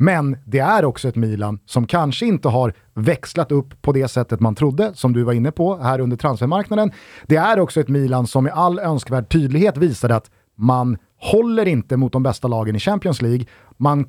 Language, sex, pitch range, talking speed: Swedish, male, 120-175 Hz, 205 wpm